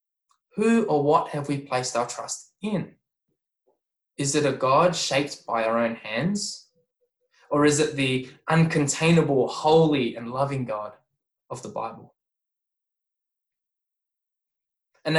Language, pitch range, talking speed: English, 130-180 Hz, 125 wpm